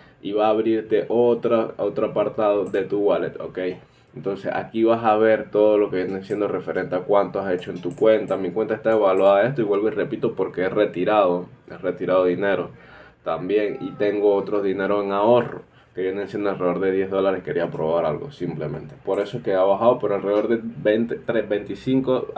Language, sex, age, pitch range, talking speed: English, male, 10-29, 95-110 Hz, 200 wpm